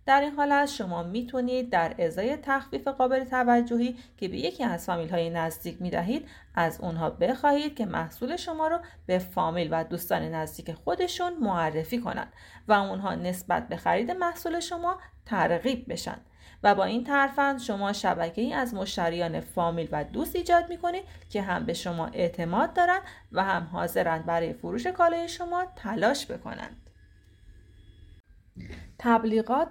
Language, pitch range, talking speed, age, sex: Persian, 170-265 Hz, 145 wpm, 30-49, female